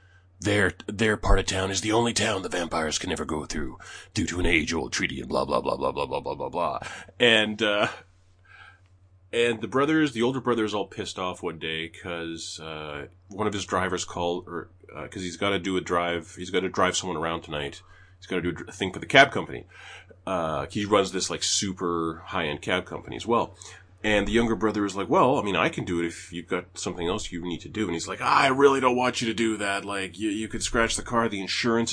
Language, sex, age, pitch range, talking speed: English, male, 30-49, 90-115 Hz, 250 wpm